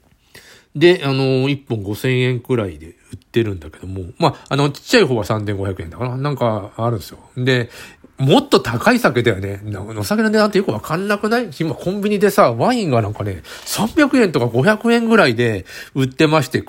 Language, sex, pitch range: Japanese, male, 110-160 Hz